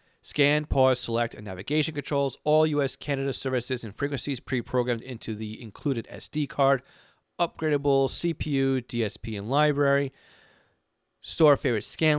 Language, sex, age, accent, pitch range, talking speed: English, male, 30-49, American, 110-145 Hz, 130 wpm